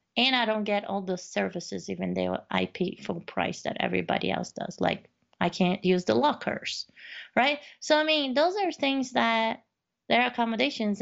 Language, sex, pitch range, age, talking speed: English, female, 180-235 Hz, 30-49, 180 wpm